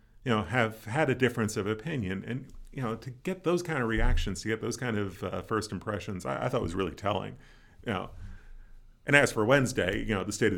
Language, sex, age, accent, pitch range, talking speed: English, male, 40-59, American, 95-115 Hz, 240 wpm